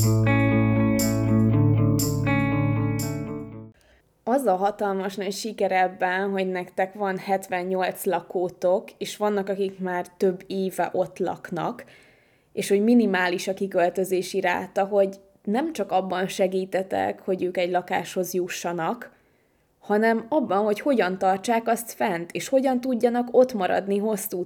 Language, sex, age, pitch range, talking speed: Hungarian, female, 20-39, 185-215 Hz, 115 wpm